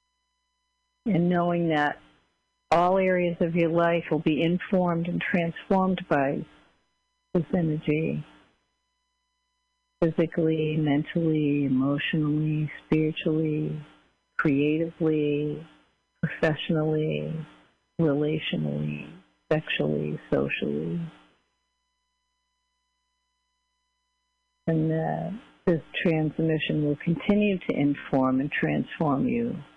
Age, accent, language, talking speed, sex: 50-69, American, English, 75 wpm, female